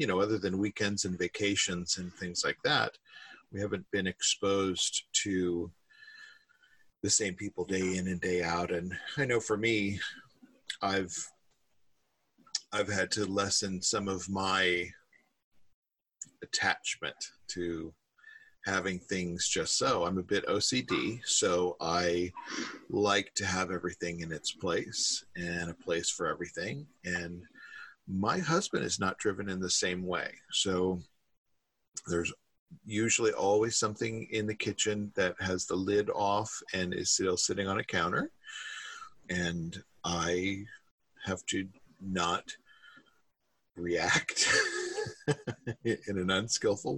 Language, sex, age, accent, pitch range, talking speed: English, male, 40-59, American, 90-115 Hz, 130 wpm